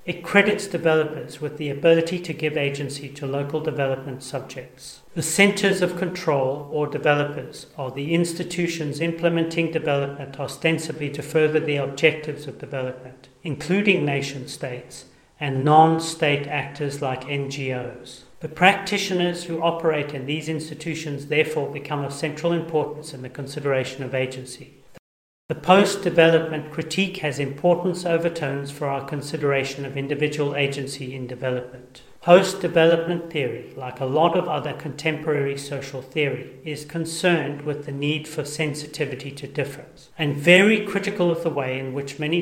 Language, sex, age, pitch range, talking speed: English, male, 40-59, 140-165 Hz, 135 wpm